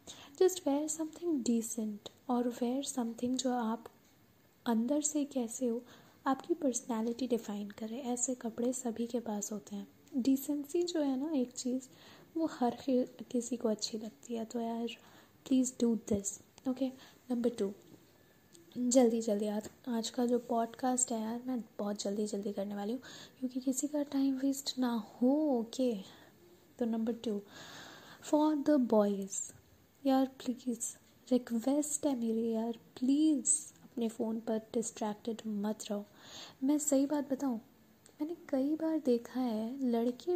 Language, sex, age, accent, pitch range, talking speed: Hindi, female, 10-29, native, 230-280 Hz, 145 wpm